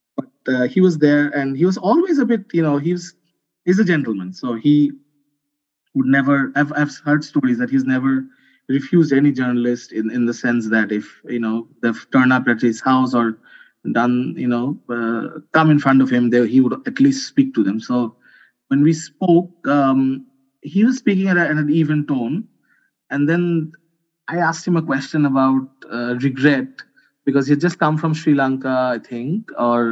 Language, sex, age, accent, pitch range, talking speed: English, male, 20-39, Indian, 120-160 Hz, 185 wpm